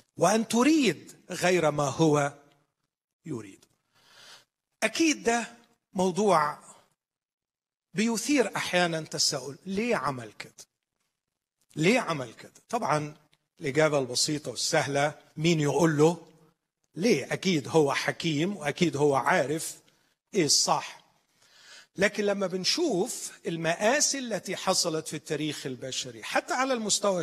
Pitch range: 150-210 Hz